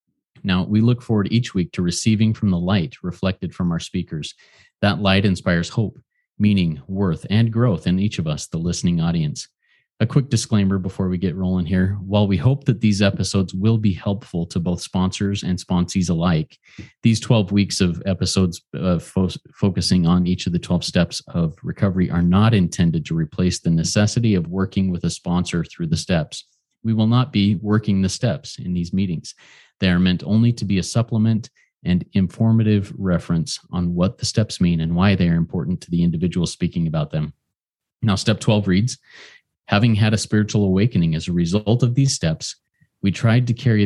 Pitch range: 90-110 Hz